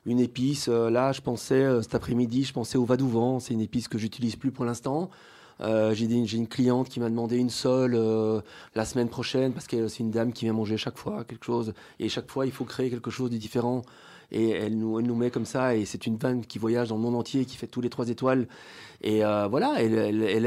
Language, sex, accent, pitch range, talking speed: French, male, French, 115-135 Hz, 260 wpm